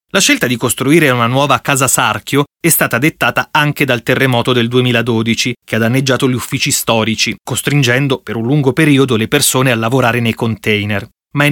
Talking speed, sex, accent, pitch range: 180 wpm, male, native, 115-155 Hz